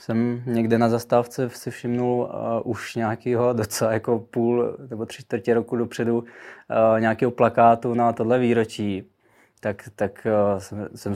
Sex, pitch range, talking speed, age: male, 100-115 Hz, 130 wpm, 20-39